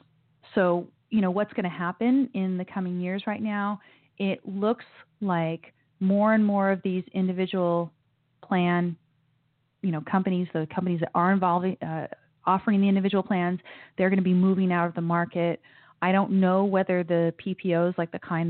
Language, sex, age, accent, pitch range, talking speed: English, female, 30-49, American, 170-200 Hz, 175 wpm